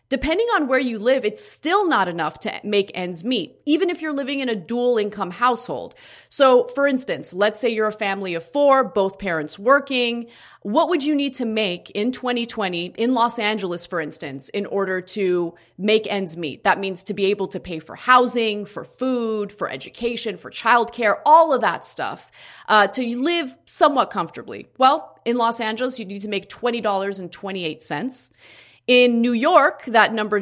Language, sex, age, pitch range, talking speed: English, female, 30-49, 190-250 Hz, 185 wpm